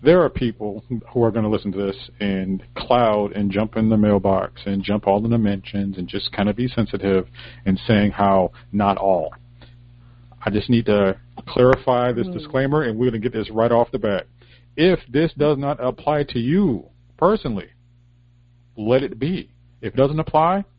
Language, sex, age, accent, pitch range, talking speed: English, male, 40-59, American, 100-130 Hz, 190 wpm